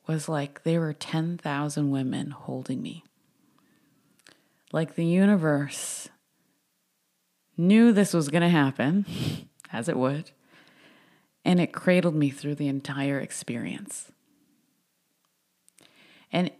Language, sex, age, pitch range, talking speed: English, female, 30-49, 140-170 Hz, 105 wpm